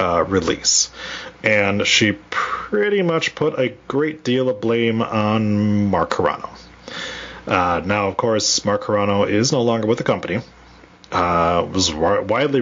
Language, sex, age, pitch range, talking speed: English, male, 30-49, 100-125 Hz, 145 wpm